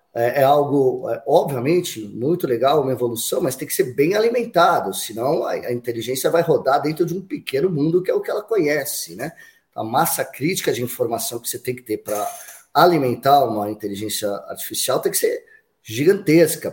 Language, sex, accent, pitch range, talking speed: Portuguese, male, Brazilian, 130-185 Hz, 175 wpm